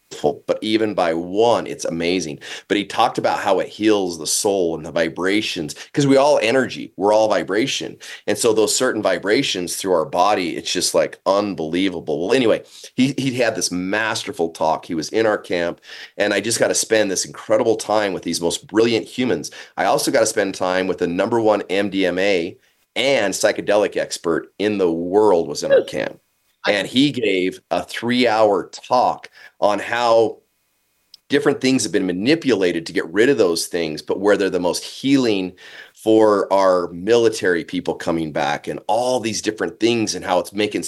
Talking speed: 185 wpm